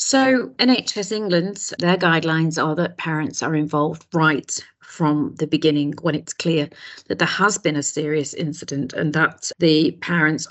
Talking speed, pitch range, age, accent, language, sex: 160 wpm, 155-190 Hz, 40-59, British, English, female